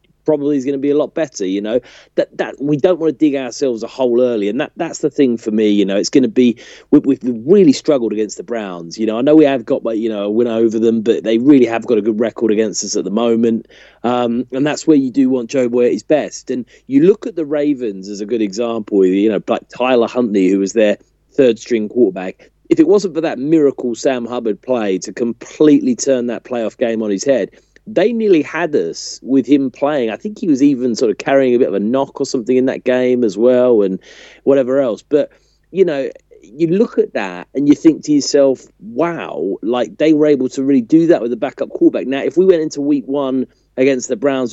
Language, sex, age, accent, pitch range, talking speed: English, male, 30-49, British, 115-145 Hz, 245 wpm